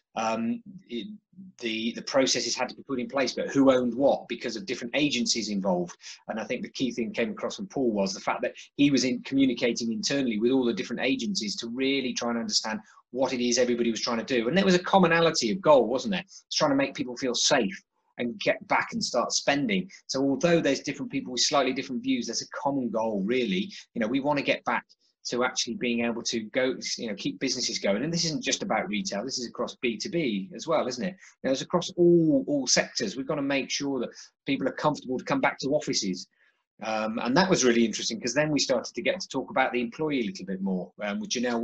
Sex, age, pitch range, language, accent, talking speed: male, 30-49, 120-180 Hz, English, British, 240 wpm